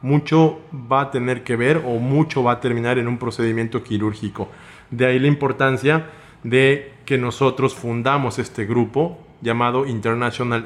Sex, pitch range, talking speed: male, 120-145 Hz, 150 wpm